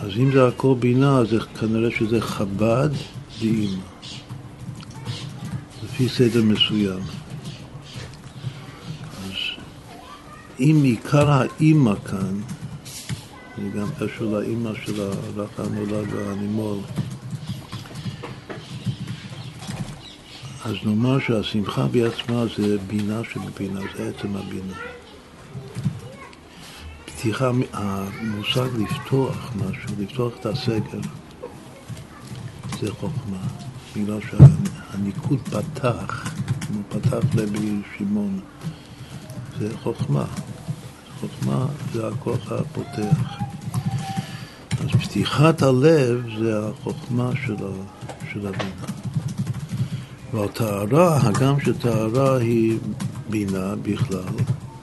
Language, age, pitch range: Hebrew, 60-79, 105-140 Hz